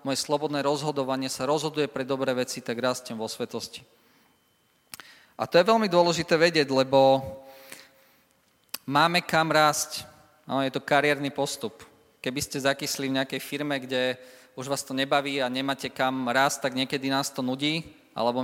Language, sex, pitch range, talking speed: Slovak, male, 130-155 Hz, 155 wpm